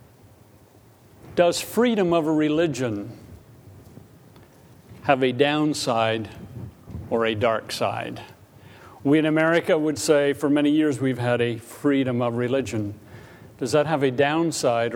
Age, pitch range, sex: 50-69, 125-160 Hz, male